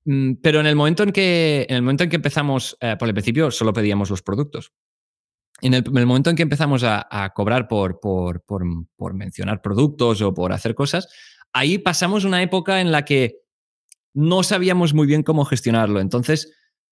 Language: Spanish